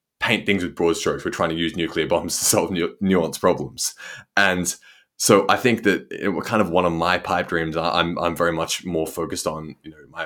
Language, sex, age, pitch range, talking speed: English, male, 20-39, 80-100 Hz, 220 wpm